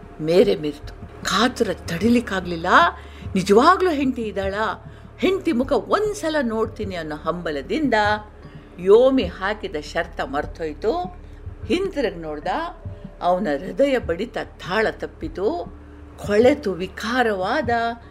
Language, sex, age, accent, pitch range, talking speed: Kannada, female, 50-69, native, 175-255 Hz, 85 wpm